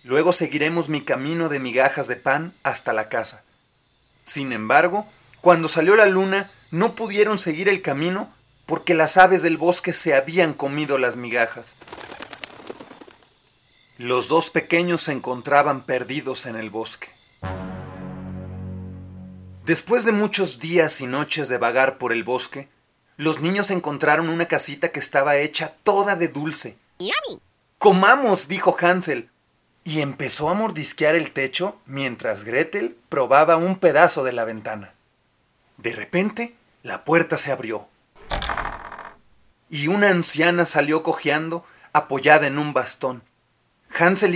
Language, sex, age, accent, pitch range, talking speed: Spanish, male, 40-59, Mexican, 130-175 Hz, 130 wpm